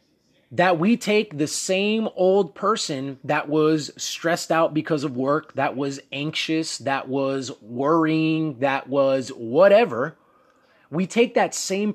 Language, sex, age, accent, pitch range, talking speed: English, male, 30-49, American, 160-210 Hz, 135 wpm